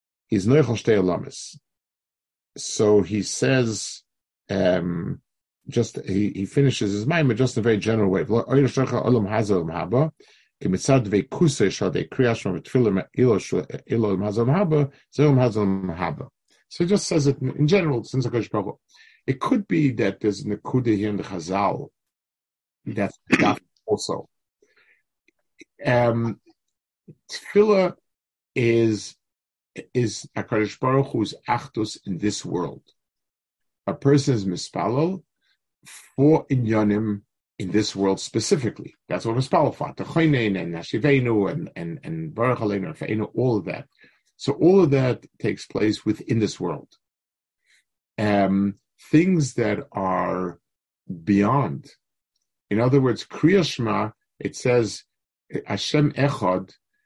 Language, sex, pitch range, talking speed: English, male, 100-140 Hz, 100 wpm